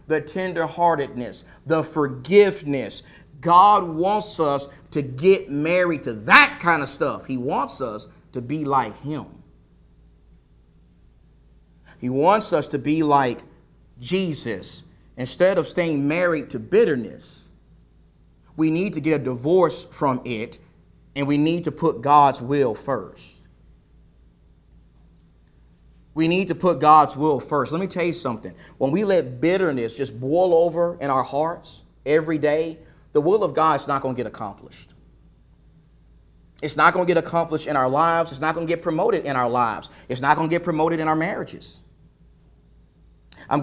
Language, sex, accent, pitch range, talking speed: English, male, American, 130-170 Hz, 155 wpm